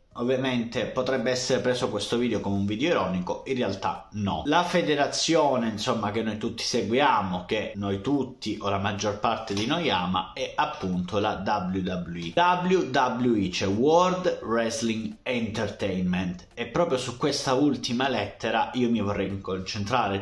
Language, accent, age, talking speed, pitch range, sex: Italian, native, 30-49, 145 wpm, 100-155 Hz, male